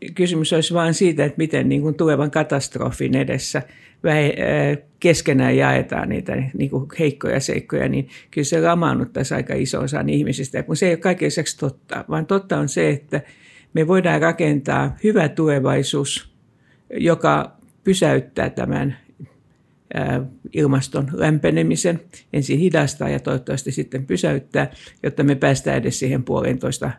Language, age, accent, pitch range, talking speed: Finnish, 50-69, native, 135-170 Hz, 120 wpm